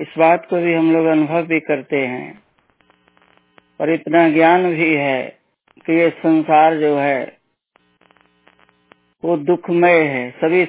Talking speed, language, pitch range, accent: 135 wpm, Hindi, 155-205 Hz, native